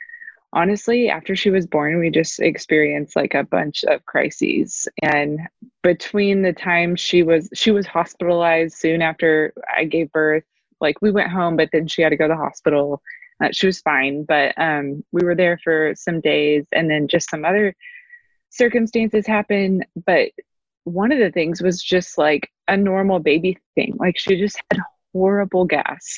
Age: 20-39